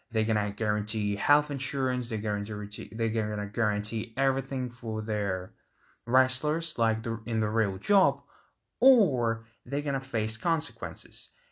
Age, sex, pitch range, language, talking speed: 20-39, male, 110-135 Hz, English, 130 wpm